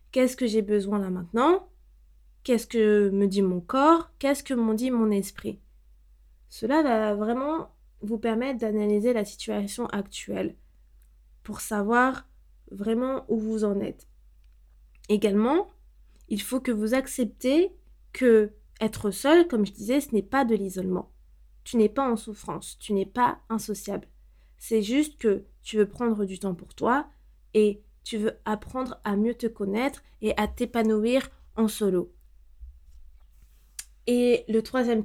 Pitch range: 195-245 Hz